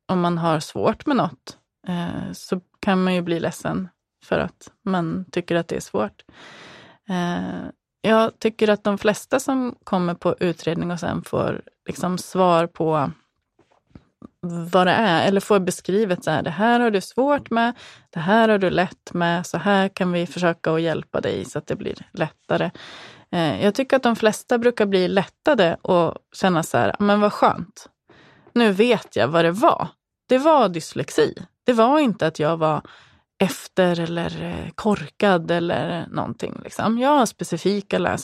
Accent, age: native, 20-39